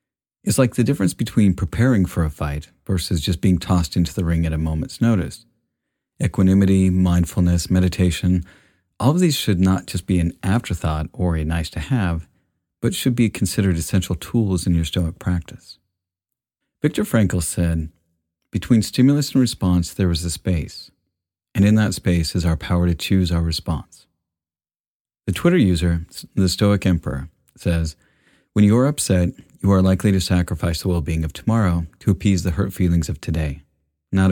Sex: male